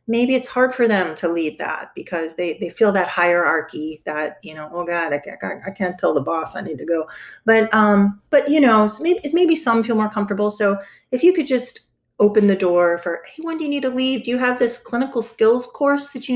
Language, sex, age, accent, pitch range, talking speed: English, female, 30-49, American, 165-220 Hz, 240 wpm